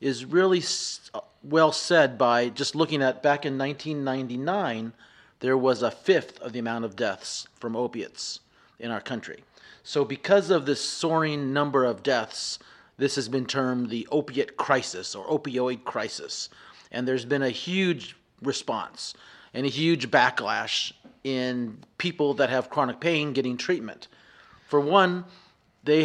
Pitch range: 125-150 Hz